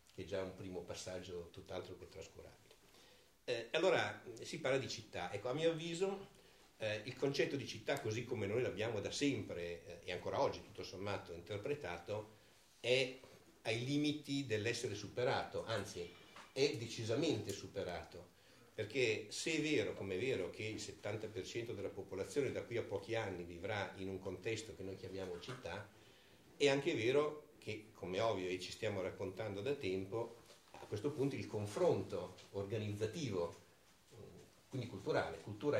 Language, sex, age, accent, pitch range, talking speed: Italian, male, 60-79, native, 95-125 Hz, 150 wpm